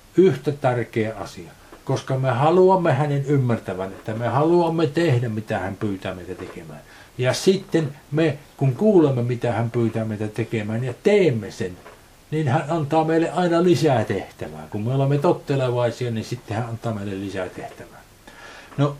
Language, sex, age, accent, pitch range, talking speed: Finnish, male, 60-79, native, 115-155 Hz, 155 wpm